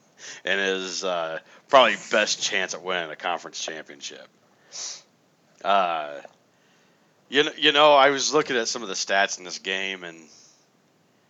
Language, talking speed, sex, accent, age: English, 145 wpm, male, American, 40-59